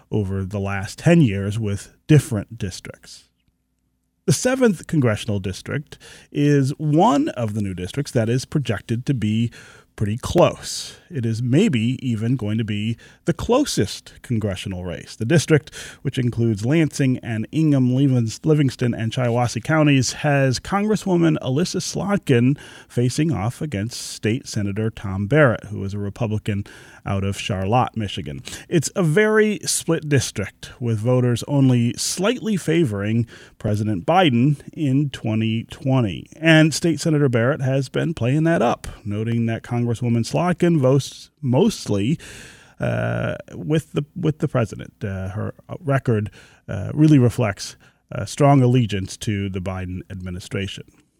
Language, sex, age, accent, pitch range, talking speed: English, male, 30-49, American, 105-150 Hz, 135 wpm